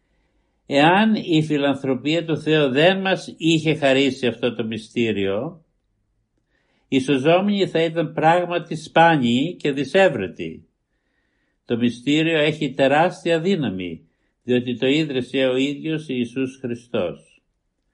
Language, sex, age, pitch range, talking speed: Greek, male, 60-79, 130-165 Hz, 105 wpm